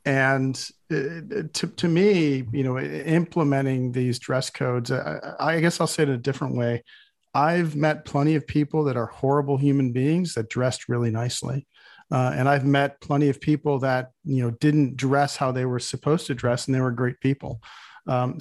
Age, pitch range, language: 40-59, 125-150 Hz, English